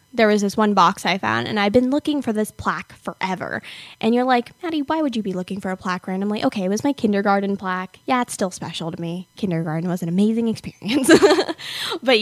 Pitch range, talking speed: 205-280 Hz, 225 wpm